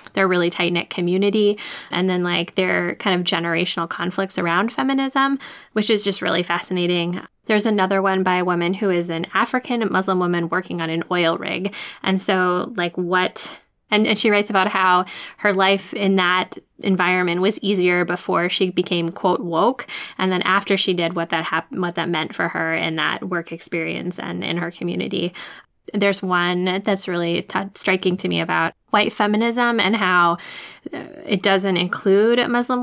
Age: 10-29